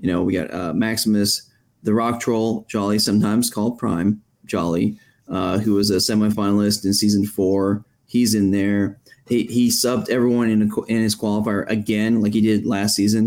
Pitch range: 100-110 Hz